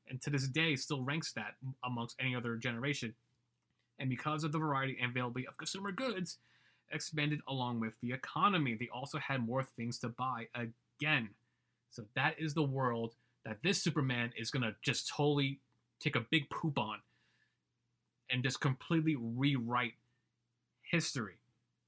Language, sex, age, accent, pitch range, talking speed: English, male, 30-49, American, 120-160 Hz, 155 wpm